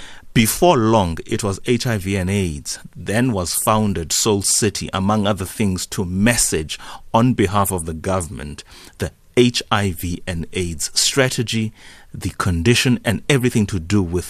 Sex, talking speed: male, 145 wpm